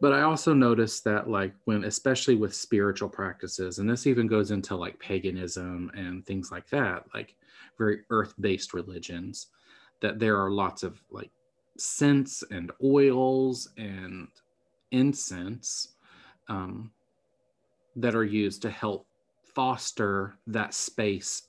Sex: male